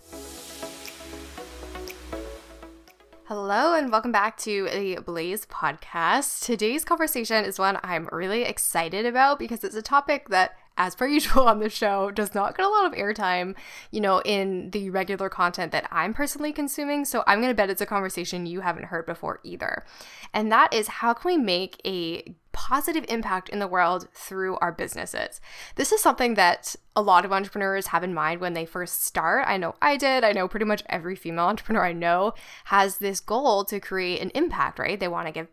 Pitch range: 180-240 Hz